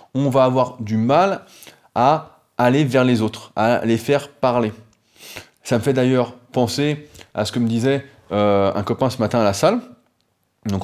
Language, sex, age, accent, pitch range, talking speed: French, male, 20-39, French, 110-140 Hz, 185 wpm